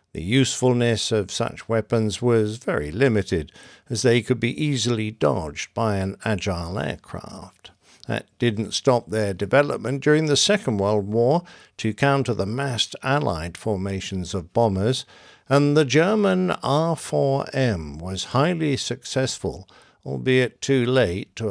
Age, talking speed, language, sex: 60-79, 130 wpm, English, male